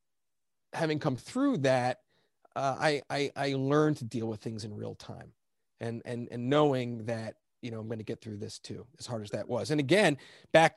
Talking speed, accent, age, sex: 210 wpm, American, 30-49, male